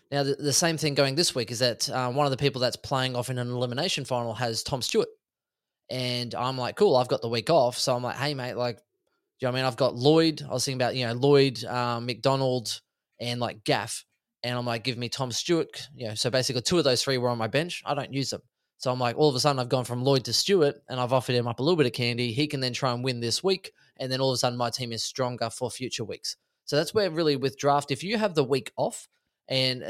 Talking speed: 285 wpm